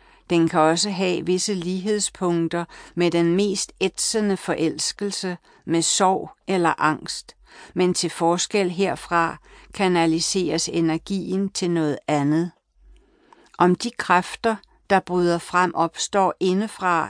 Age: 60-79